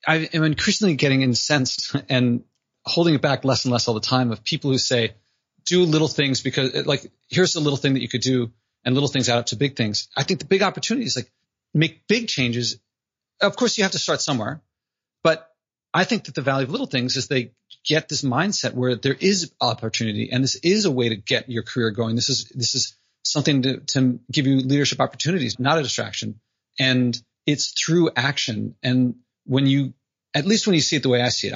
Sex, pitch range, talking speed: male, 125-155 Hz, 220 wpm